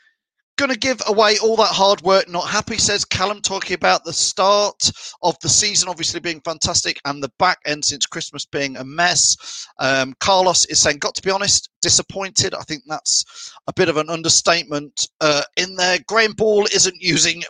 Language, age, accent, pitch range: English, 30-49, British, 155-205 Hz